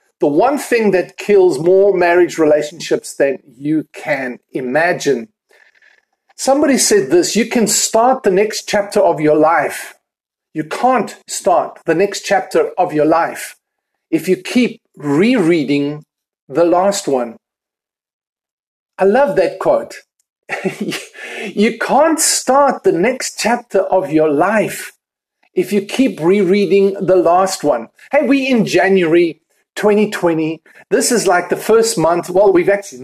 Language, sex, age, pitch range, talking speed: English, male, 50-69, 180-230 Hz, 135 wpm